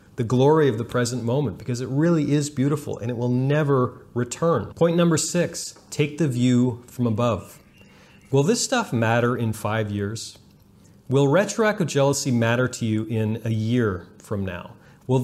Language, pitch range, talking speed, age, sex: English, 115-155 Hz, 170 wpm, 30-49, male